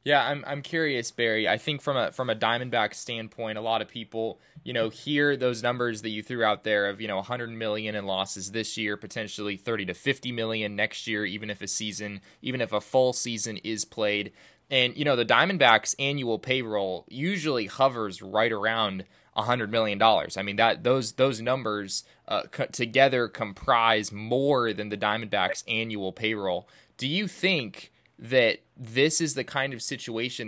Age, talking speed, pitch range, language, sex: 20-39, 185 wpm, 105-125 Hz, English, male